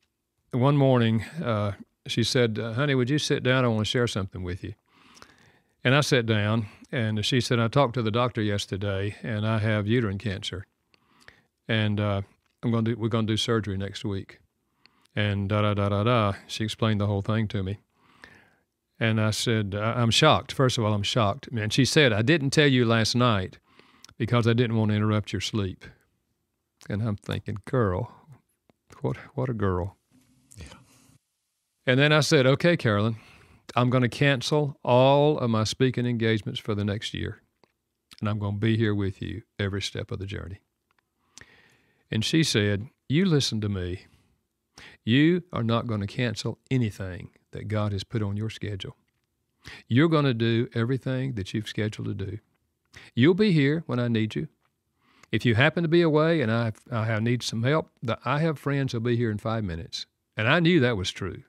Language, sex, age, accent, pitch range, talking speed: English, male, 50-69, American, 105-130 Hz, 180 wpm